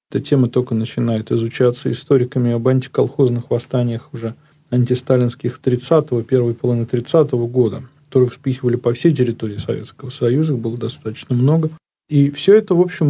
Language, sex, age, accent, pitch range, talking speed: Russian, male, 40-59, native, 120-140 Hz, 140 wpm